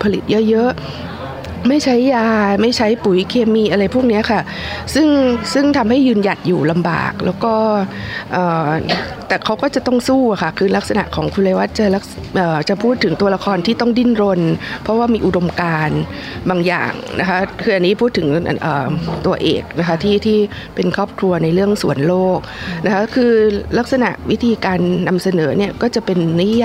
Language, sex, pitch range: Thai, female, 180-225 Hz